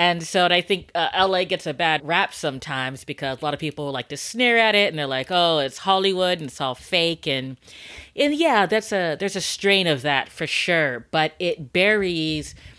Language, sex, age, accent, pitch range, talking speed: English, female, 30-49, American, 140-175 Hz, 220 wpm